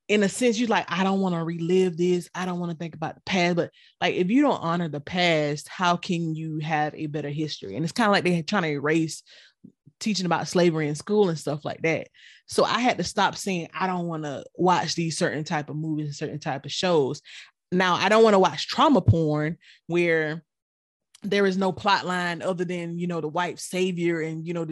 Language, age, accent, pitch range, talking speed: English, 20-39, American, 160-195 Hz, 235 wpm